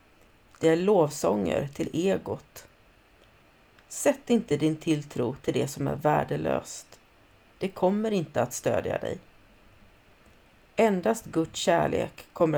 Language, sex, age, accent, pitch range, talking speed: Swedish, female, 40-59, native, 125-175 Hz, 115 wpm